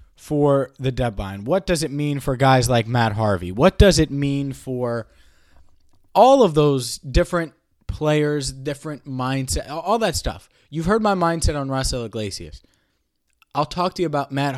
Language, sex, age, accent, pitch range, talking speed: English, male, 20-39, American, 125-160 Hz, 165 wpm